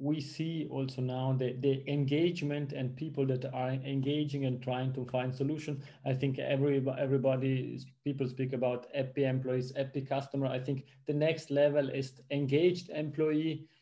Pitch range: 130-150 Hz